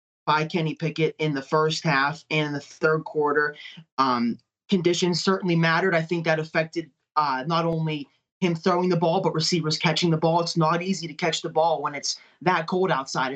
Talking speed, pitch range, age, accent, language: 195 wpm, 150-170 Hz, 20-39, American, English